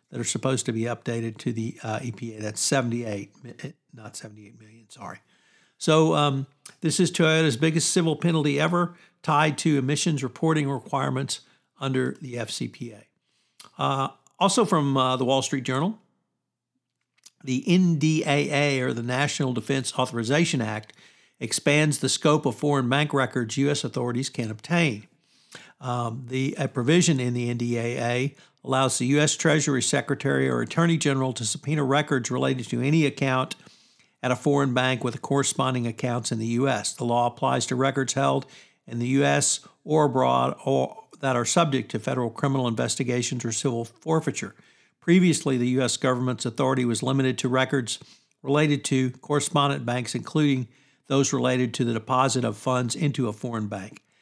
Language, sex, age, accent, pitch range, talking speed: English, male, 60-79, American, 120-145 Hz, 150 wpm